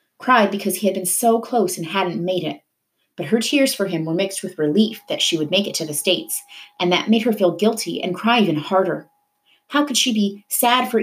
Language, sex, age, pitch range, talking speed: English, female, 30-49, 165-220 Hz, 240 wpm